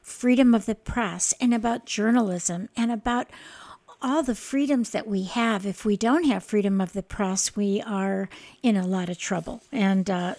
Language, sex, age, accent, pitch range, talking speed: English, female, 50-69, American, 200-245 Hz, 185 wpm